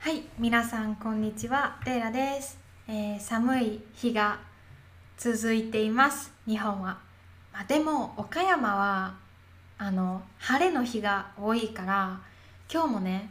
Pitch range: 195-250 Hz